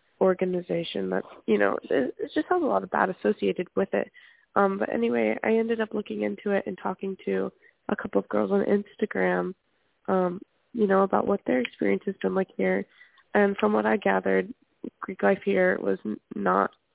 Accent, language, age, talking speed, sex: American, English, 20-39, 190 wpm, female